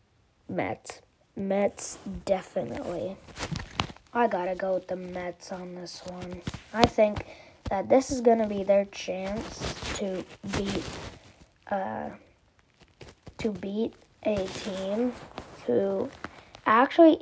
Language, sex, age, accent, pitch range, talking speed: English, female, 20-39, American, 190-240 Hz, 110 wpm